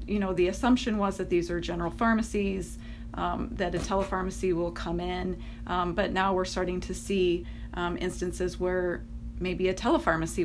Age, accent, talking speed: 30-49, American, 170 wpm